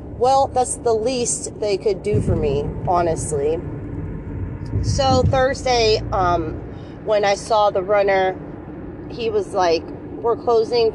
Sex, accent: female, American